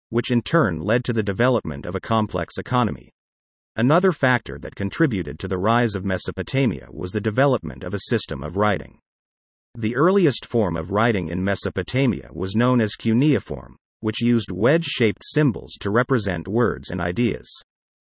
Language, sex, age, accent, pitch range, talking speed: English, male, 50-69, American, 95-125 Hz, 165 wpm